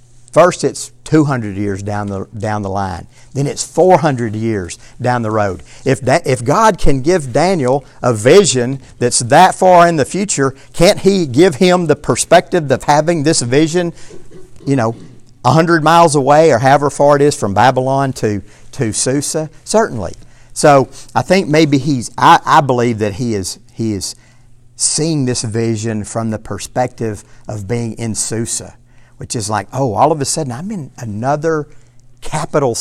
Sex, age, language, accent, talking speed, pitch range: male, 50-69, English, American, 170 wpm, 120-150 Hz